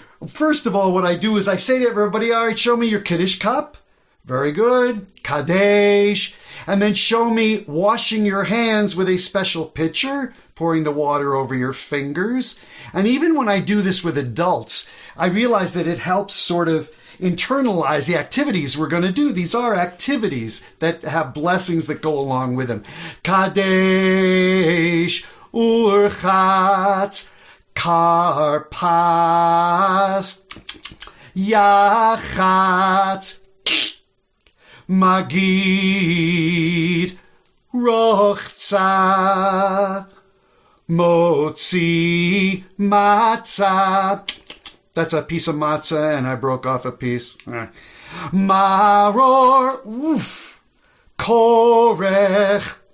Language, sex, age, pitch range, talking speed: English, male, 50-69, 165-205 Hz, 110 wpm